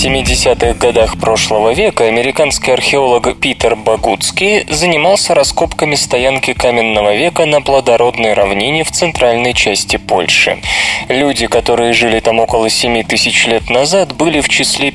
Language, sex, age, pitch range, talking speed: Russian, male, 20-39, 115-140 Hz, 130 wpm